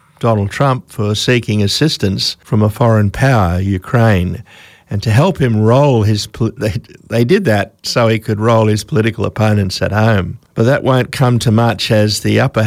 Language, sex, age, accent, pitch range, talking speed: English, male, 50-69, Australian, 105-120 Hz, 180 wpm